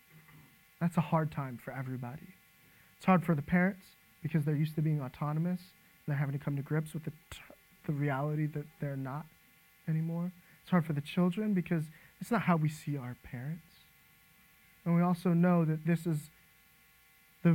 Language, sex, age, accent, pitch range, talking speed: English, male, 20-39, American, 155-180 Hz, 185 wpm